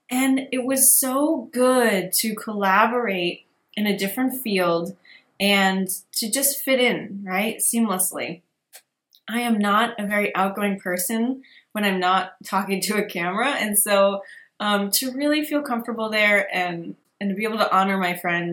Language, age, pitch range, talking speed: English, 20-39, 185-235 Hz, 160 wpm